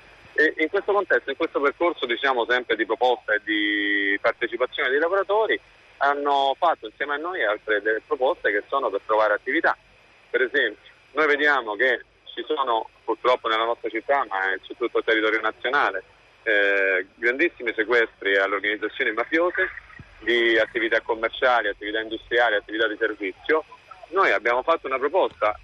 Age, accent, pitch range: 40-59, native, 110-165 Hz